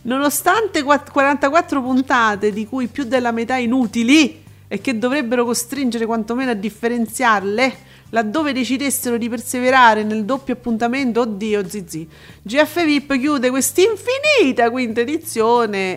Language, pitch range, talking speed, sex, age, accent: Italian, 200-260 Hz, 115 wpm, female, 40-59, native